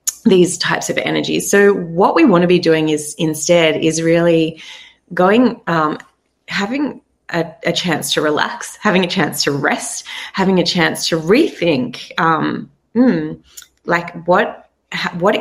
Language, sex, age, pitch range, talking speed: English, female, 20-39, 160-195 Hz, 150 wpm